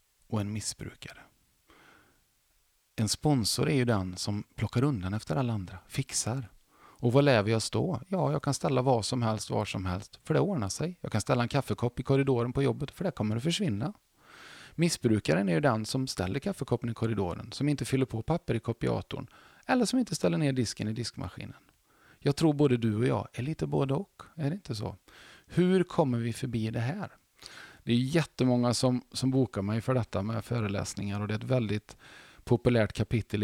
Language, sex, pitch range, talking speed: Swedish, male, 110-140 Hz, 195 wpm